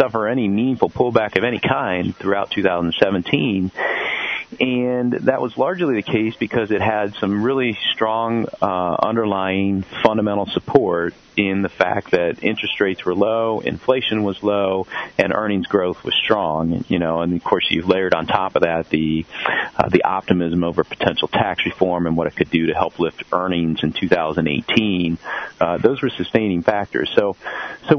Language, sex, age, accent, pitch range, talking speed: English, male, 40-59, American, 90-115 Hz, 170 wpm